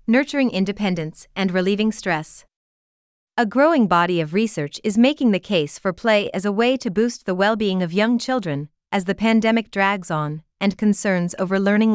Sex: female